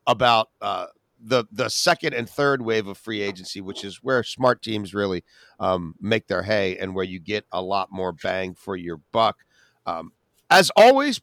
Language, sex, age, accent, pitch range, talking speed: English, male, 40-59, American, 110-165 Hz, 185 wpm